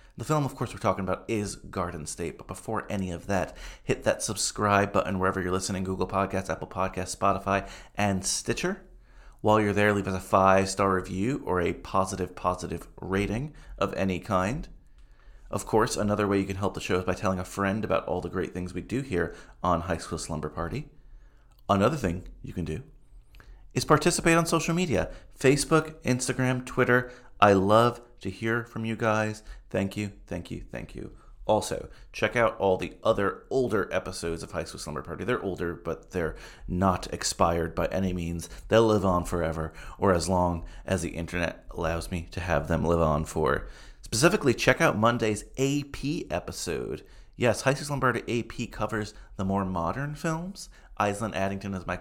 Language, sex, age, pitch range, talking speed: English, male, 30-49, 90-115 Hz, 185 wpm